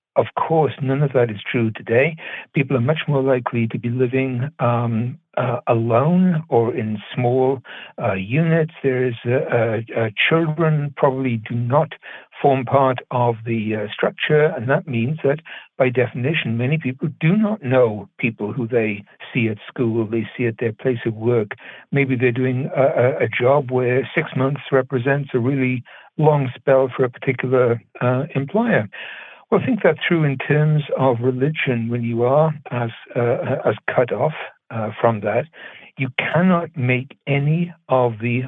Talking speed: 160 wpm